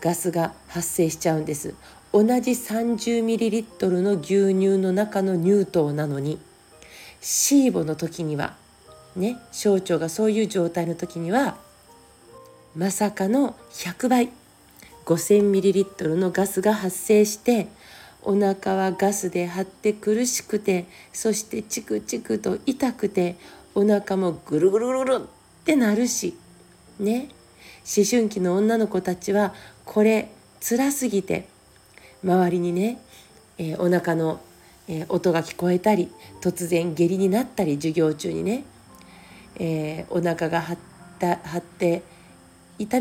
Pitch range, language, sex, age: 170-210 Hz, Japanese, female, 40-59